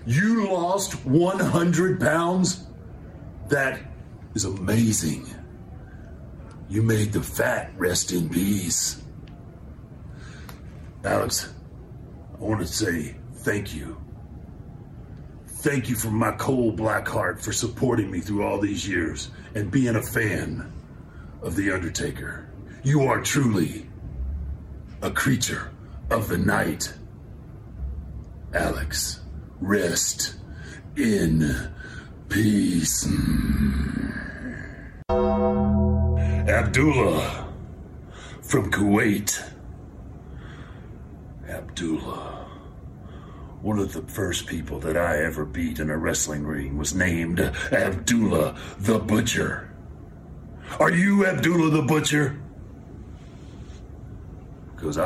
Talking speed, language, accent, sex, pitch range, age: 90 wpm, English, American, male, 80-115 Hz, 50-69